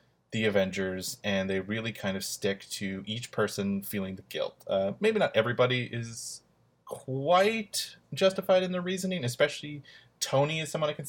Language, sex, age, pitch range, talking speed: English, male, 30-49, 95-125 Hz, 160 wpm